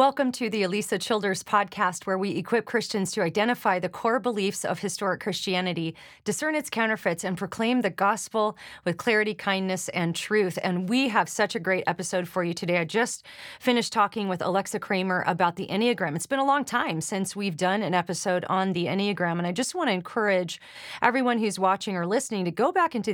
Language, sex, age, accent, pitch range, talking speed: English, female, 30-49, American, 180-220 Hz, 200 wpm